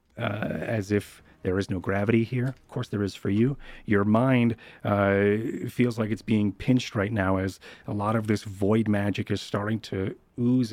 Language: English